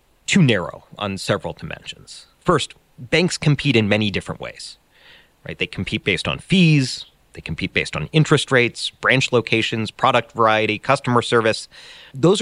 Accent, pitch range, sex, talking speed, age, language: American, 100-135 Hz, male, 150 wpm, 30-49, English